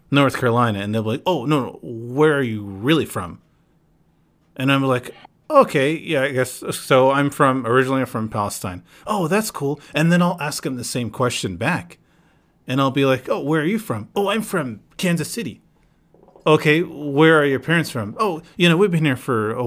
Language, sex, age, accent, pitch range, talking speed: English, male, 30-49, American, 125-155 Hz, 205 wpm